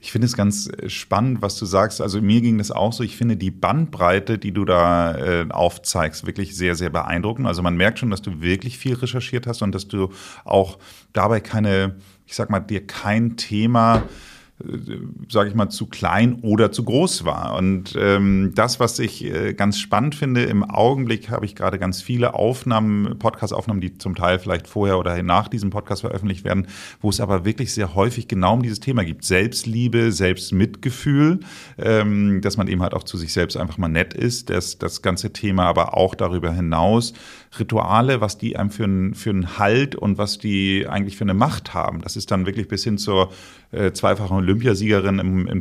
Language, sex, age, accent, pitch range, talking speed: German, male, 40-59, German, 95-115 Hz, 195 wpm